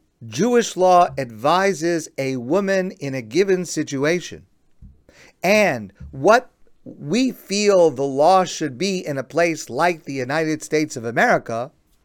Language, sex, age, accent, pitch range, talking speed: English, male, 50-69, American, 150-215 Hz, 130 wpm